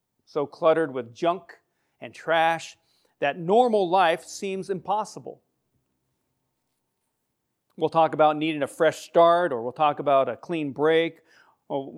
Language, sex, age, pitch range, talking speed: English, male, 40-59, 130-160 Hz, 130 wpm